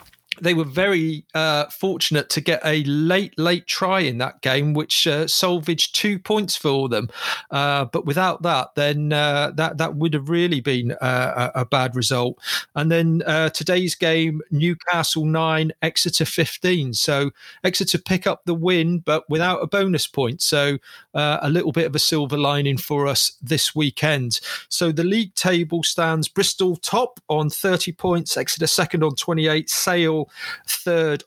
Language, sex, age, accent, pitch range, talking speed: English, male, 40-59, British, 145-180 Hz, 165 wpm